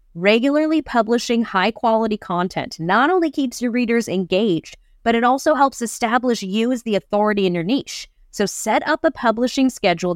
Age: 30-49